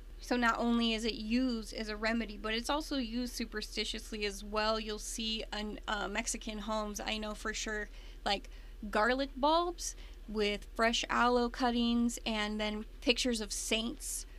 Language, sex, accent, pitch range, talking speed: English, female, American, 220-255 Hz, 160 wpm